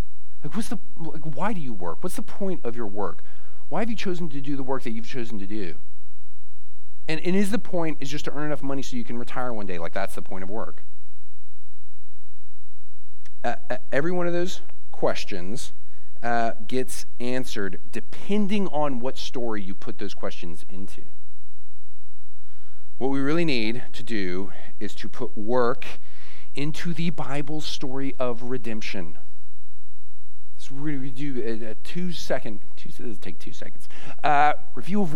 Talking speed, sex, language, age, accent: 165 wpm, male, English, 40-59, American